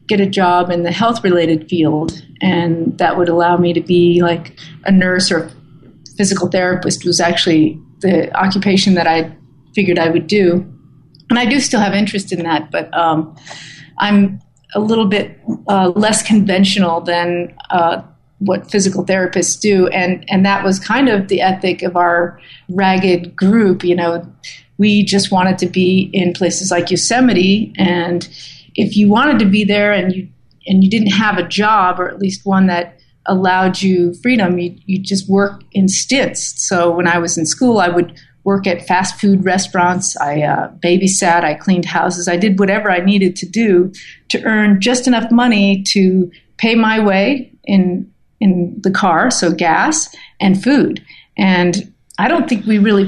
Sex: female